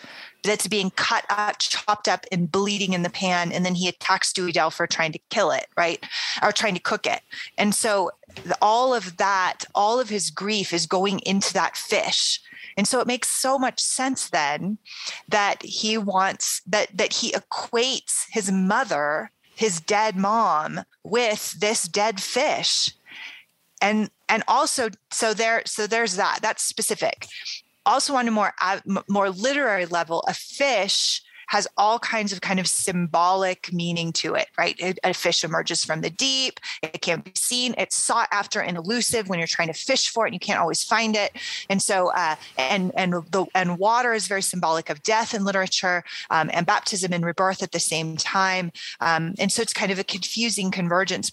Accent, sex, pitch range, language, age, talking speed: American, female, 175-220 Hz, English, 30-49, 185 wpm